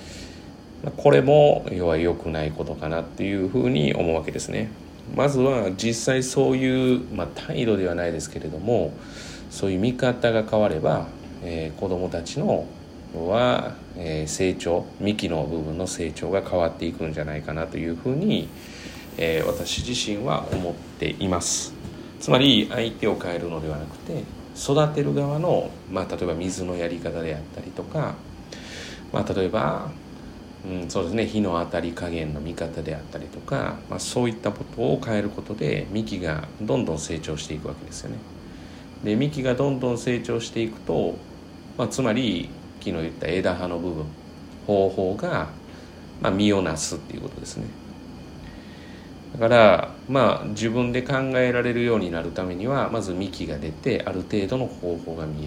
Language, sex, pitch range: Japanese, male, 80-115 Hz